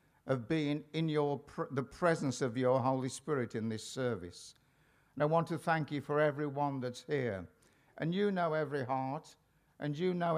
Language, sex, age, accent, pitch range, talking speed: English, male, 60-79, British, 135-185 Hz, 185 wpm